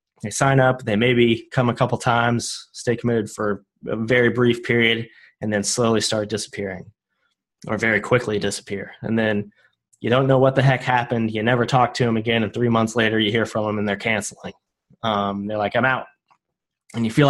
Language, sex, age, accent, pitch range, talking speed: English, male, 20-39, American, 105-125 Hz, 205 wpm